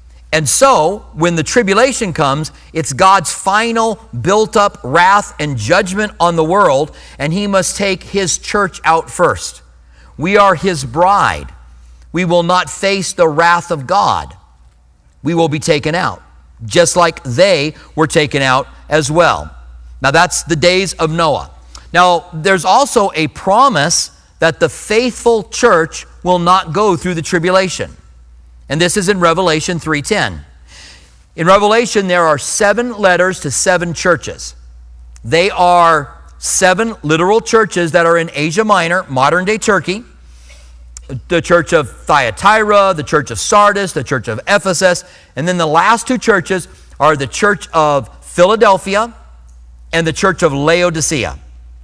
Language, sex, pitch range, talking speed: English, male, 130-195 Hz, 150 wpm